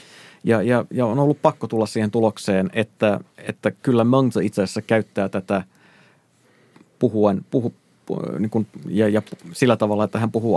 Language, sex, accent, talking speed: Finnish, male, native, 160 wpm